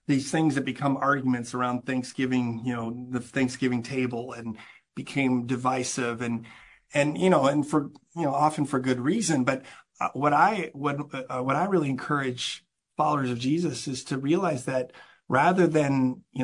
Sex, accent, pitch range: male, American, 130-155 Hz